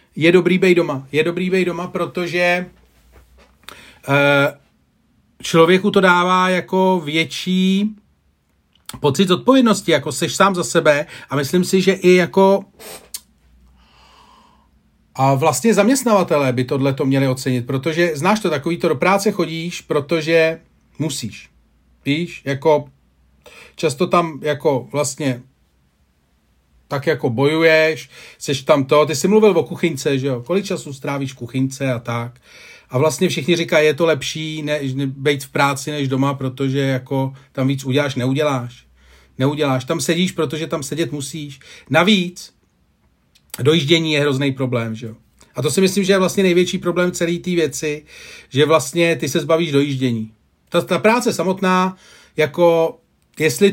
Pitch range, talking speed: 135-175 Hz, 145 wpm